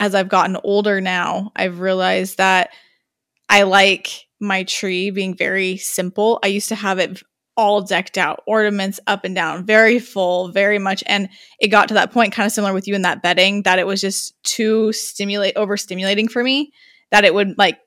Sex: female